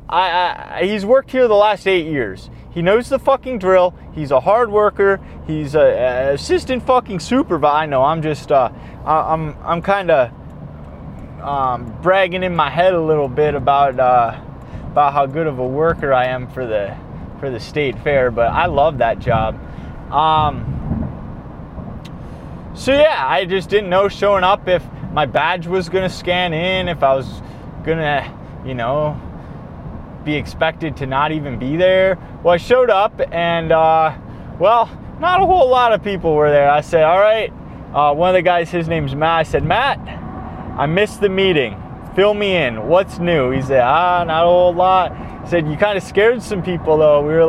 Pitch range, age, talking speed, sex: 145-195 Hz, 20-39, 185 wpm, male